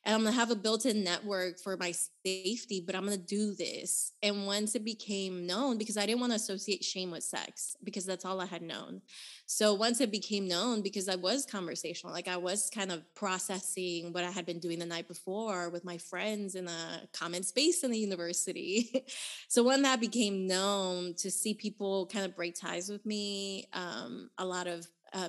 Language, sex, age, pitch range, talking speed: English, female, 20-39, 180-215 Hz, 210 wpm